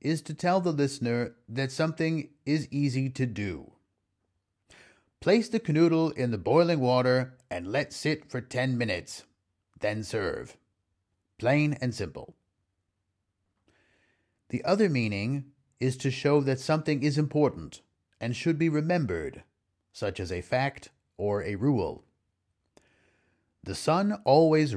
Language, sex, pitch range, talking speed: English, male, 100-155 Hz, 130 wpm